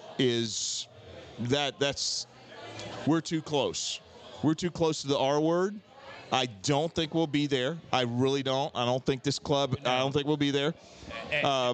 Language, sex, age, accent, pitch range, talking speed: English, male, 40-59, American, 120-150 Hz, 175 wpm